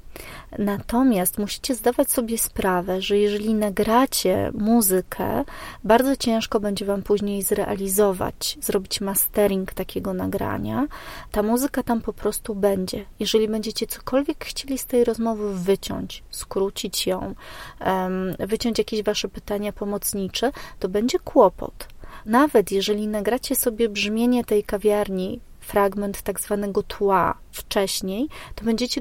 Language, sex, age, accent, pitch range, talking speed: Polish, female, 30-49, native, 200-240 Hz, 120 wpm